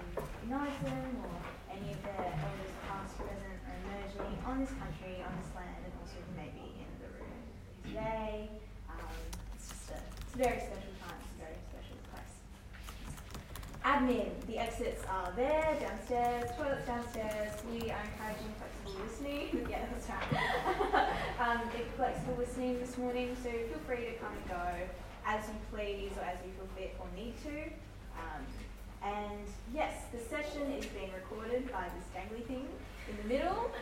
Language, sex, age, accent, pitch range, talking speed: English, female, 10-29, Australian, 190-250 Hz, 165 wpm